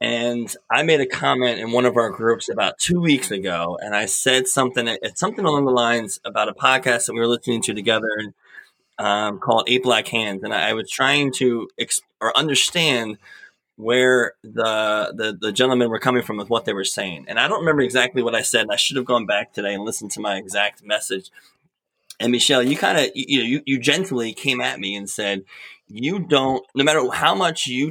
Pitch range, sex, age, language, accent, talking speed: 115-130 Hz, male, 20-39, English, American, 220 wpm